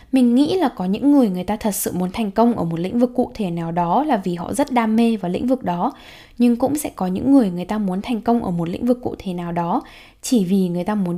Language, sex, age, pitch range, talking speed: Vietnamese, female, 10-29, 190-250 Hz, 295 wpm